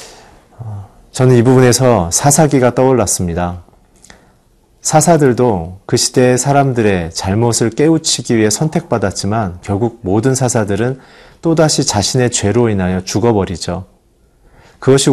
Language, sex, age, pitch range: Korean, male, 40-59, 95-130 Hz